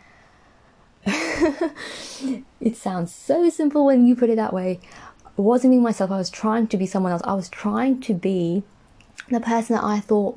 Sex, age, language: female, 20-39, English